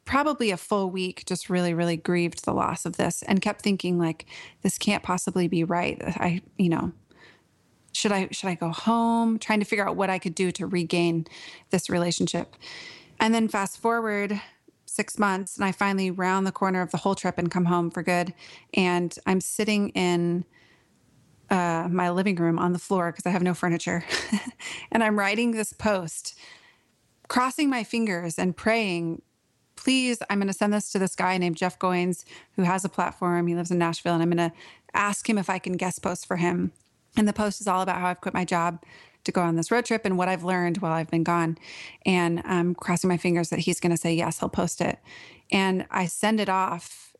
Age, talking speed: 30-49, 210 wpm